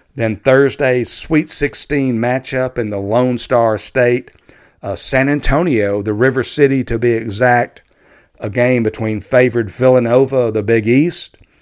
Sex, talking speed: male, 145 wpm